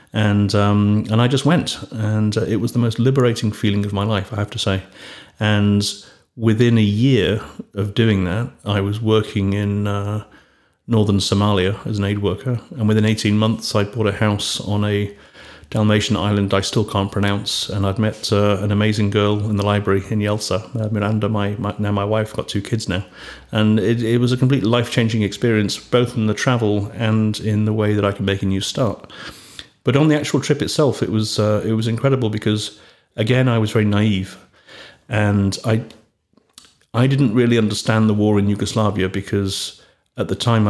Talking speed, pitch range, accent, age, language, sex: 195 wpm, 100-110 Hz, British, 40-59, Croatian, male